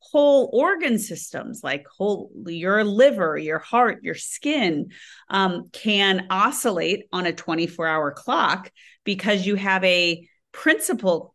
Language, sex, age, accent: English, female, 30-49, American